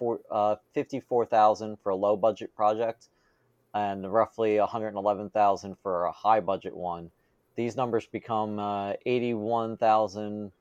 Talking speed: 135 wpm